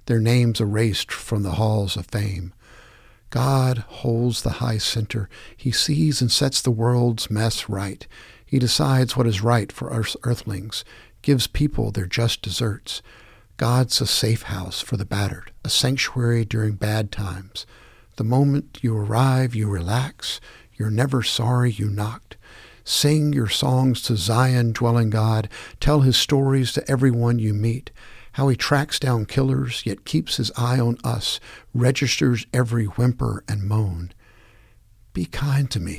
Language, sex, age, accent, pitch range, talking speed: English, male, 60-79, American, 110-130 Hz, 150 wpm